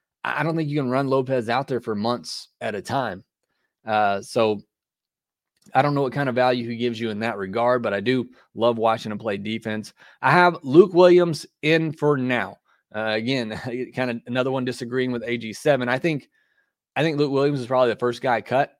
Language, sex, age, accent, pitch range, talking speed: English, male, 30-49, American, 115-140 Hz, 210 wpm